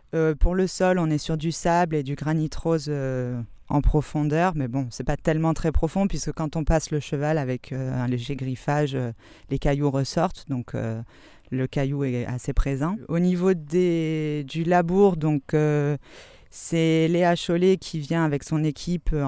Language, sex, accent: French, female, French